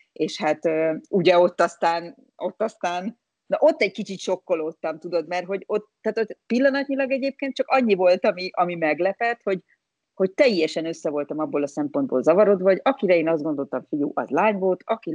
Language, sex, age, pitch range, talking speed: Hungarian, female, 30-49, 155-220 Hz, 180 wpm